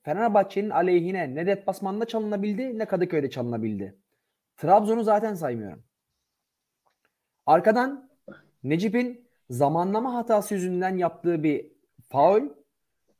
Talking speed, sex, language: 90 wpm, male, Turkish